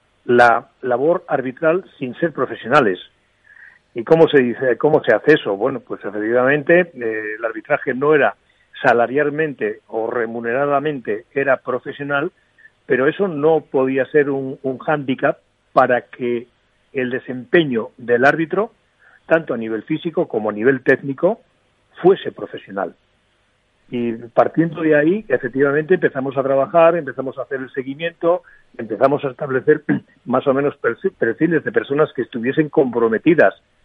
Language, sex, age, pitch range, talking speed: Spanish, male, 40-59, 120-155 Hz, 135 wpm